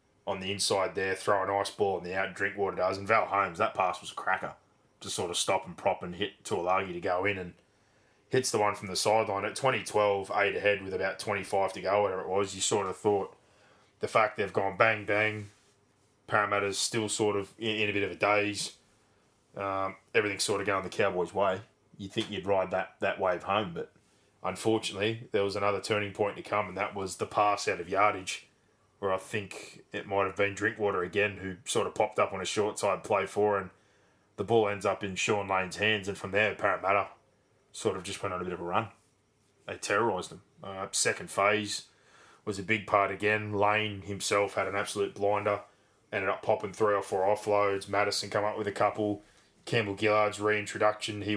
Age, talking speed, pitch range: 20-39, 215 wpm, 100-105 Hz